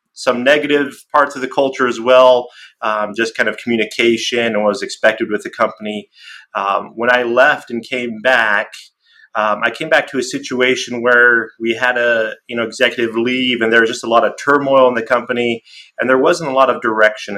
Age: 30-49